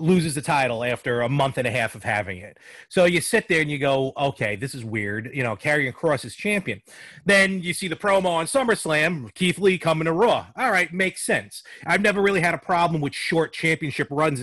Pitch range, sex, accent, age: 135-175 Hz, male, American, 30-49